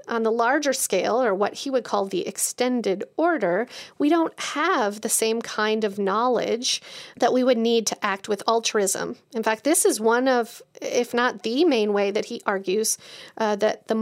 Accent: American